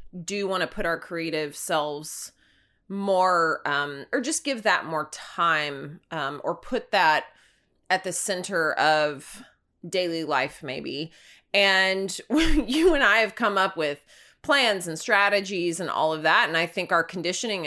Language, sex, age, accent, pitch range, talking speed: English, female, 30-49, American, 155-195 Hz, 155 wpm